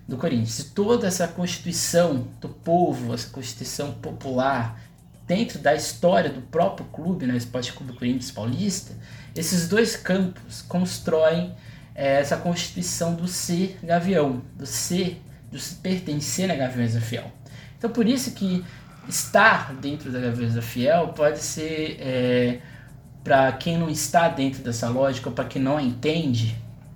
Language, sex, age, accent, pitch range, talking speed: Portuguese, male, 20-39, Brazilian, 125-165 Hz, 140 wpm